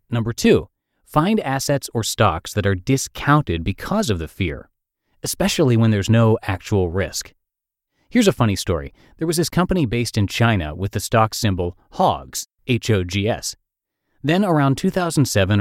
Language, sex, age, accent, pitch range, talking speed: English, male, 30-49, American, 100-140 Hz, 150 wpm